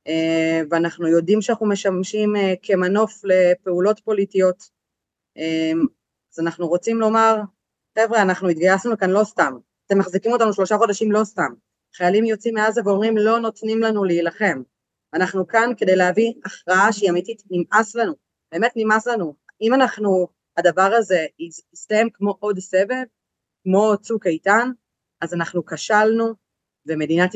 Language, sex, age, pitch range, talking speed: Hebrew, female, 30-49, 180-215 Hz, 130 wpm